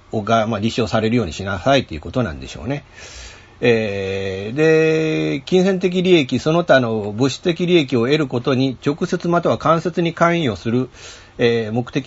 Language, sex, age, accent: Japanese, male, 40-59, native